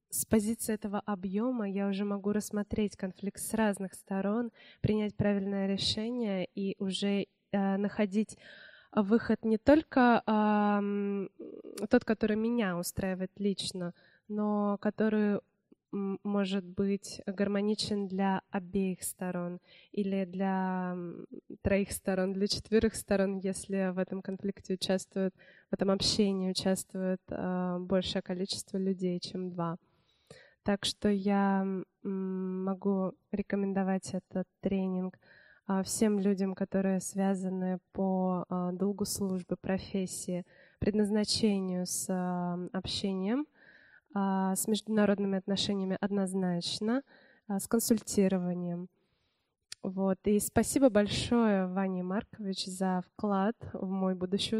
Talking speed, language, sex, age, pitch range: 100 wpm, Russian, female, 20-39, 185-210 Hz